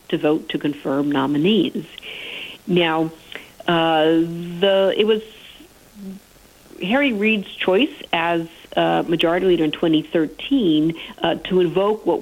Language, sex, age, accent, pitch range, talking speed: English, female, 50-69, American, 155-215 Hz, 115 wpm